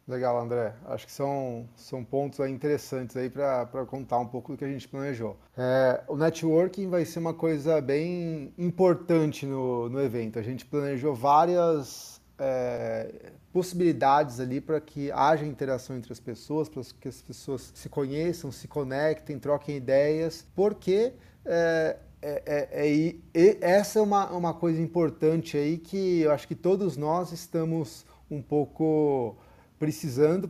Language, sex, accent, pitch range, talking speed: Portuguese, male, Brazilian, 140-175 Hz, 155 wpm